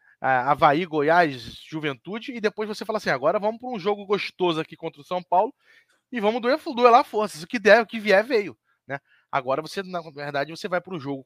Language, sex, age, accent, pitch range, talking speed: Portuguese, male, 20-39, Brazilian, 155-225 Hz, 215 wpm